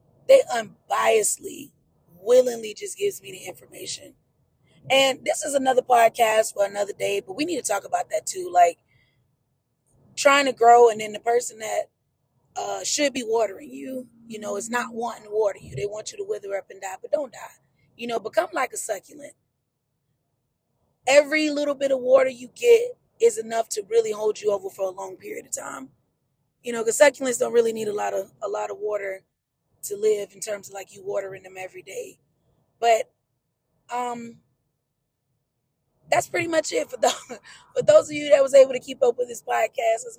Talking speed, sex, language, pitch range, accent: 195 wpm, female, English, 195-290 Hz, American